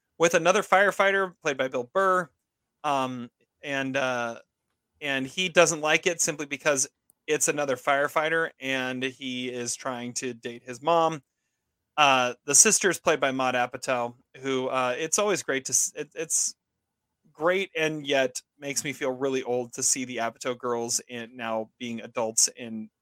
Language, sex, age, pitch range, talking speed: English, male, 30-49, 130-175 Hz, 160 wpm